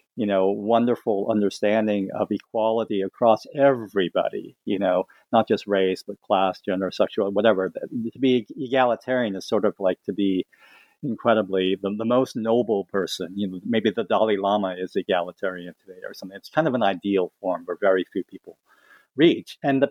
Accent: American